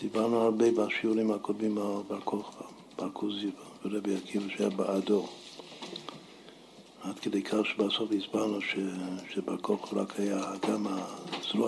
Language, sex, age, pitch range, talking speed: Hebrew, male, 60-79, 100-120 Hz, 105 wpm